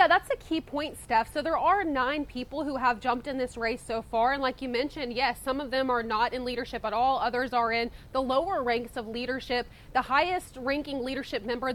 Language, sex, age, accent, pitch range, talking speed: English, female, 20-39, American, 235-275 Hz, 235 wpm